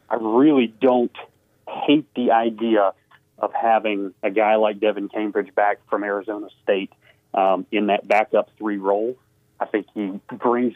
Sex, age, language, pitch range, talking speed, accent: male, 30-49, English, 100-120 Hz, 150 wpm, American